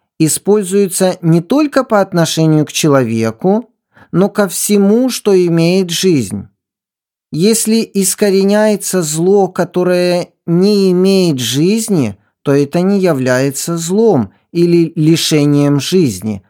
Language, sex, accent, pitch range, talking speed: Ukrainian, male, native, 155-210 Hz, 100 wpm